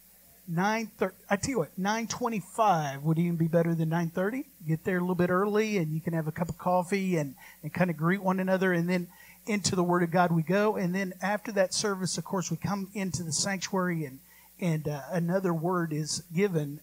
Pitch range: 165-195 Hz